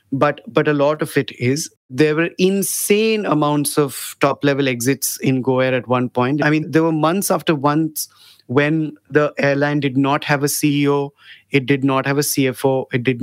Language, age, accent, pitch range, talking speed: English, 30-49, Indian, 135-160 Hz, 195 wpm